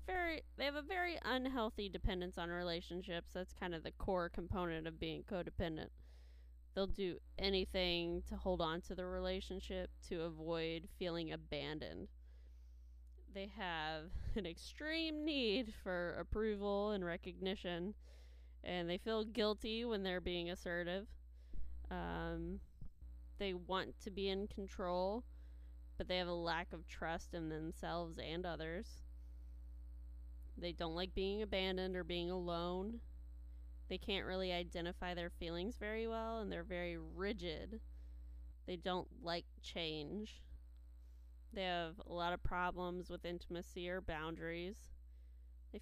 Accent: American